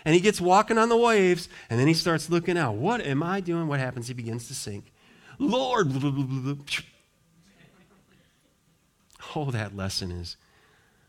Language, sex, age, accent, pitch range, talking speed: English, male, 40-59, American, 130-185 Hz, 150 wpm